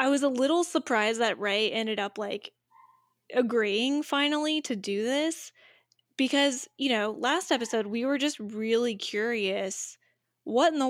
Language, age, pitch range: English, 10-29, 210-285 Hz